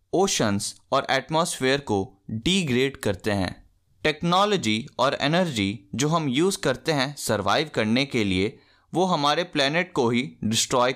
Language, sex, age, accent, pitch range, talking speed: Hindi, male, 20-39, native, 105-175 Hz, 135 wpm